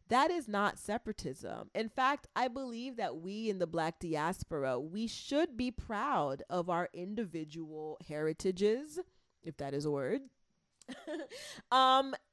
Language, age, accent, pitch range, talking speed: English, 30-49, American, 165-255 Hz, 135 wpm